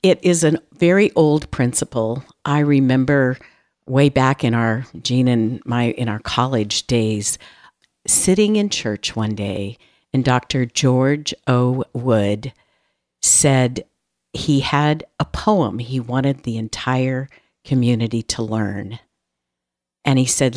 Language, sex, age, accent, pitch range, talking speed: English, female, 50-69, American, 105-140 Hz, 130 wpm